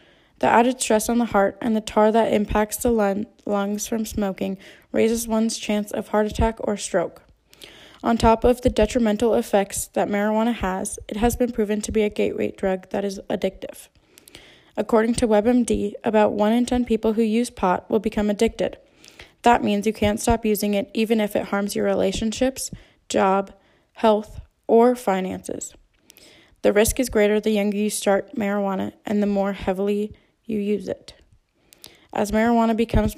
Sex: female